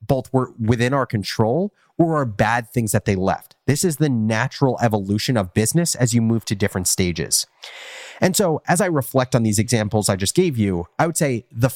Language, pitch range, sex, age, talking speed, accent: English, 105-130 Hz, male, 30-49, 210 wpm, American